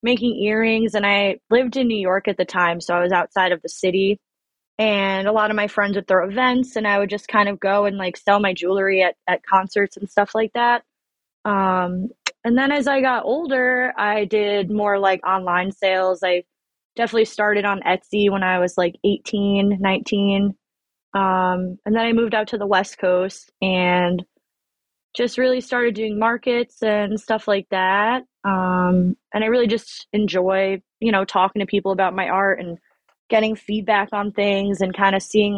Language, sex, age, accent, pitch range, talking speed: English, female, 20-39, American, 185-215 Hz, 190 wpm